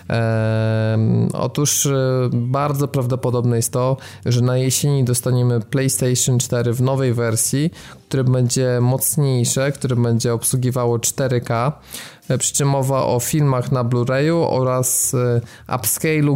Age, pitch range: 20-39, 120-140 Hz